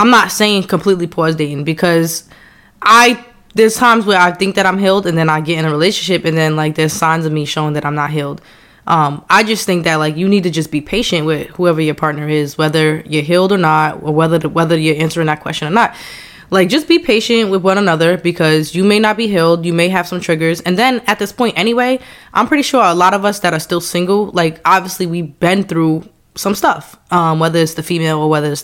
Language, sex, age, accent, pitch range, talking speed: English, female, 20-39, American, 155-200 Hz, 245 wpm